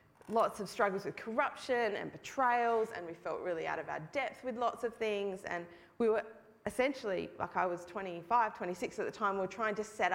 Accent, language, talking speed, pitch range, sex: Australian, English, 215 wpm, 170-225 Hz, female